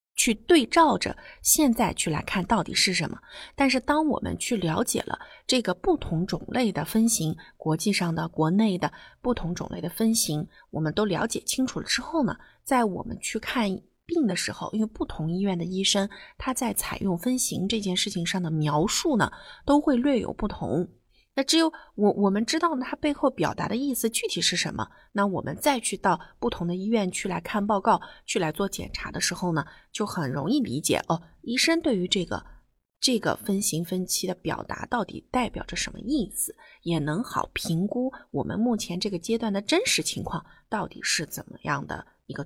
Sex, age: female, 30-49